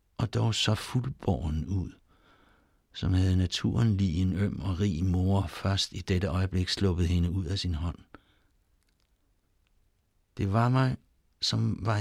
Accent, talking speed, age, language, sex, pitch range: native, 145 wpm, 60-79, Danish, male, 85-110 Hz